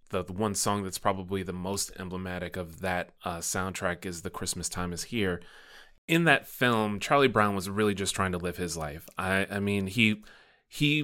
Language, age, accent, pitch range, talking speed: English, 30-49, American, 95-110 Hz, 200 wpm